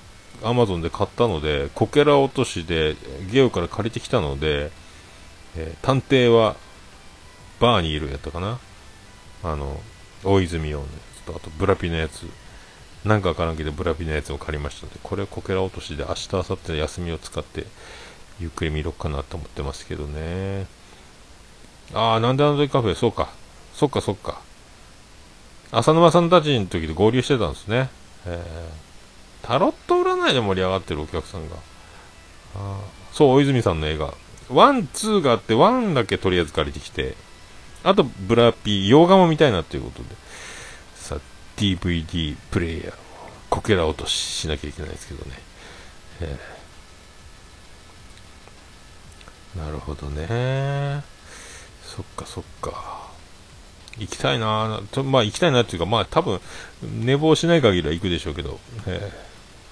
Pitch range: 80-115 Hz